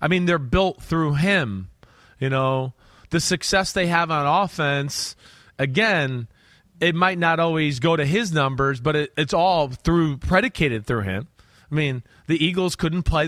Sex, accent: male, American